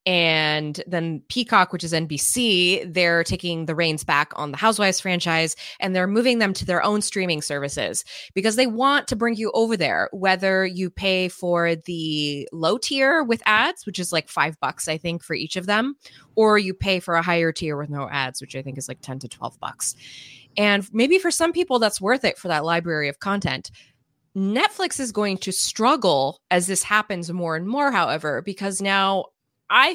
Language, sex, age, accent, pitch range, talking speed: English, female, 20-39, American, 160-215 Hz, 200 wpm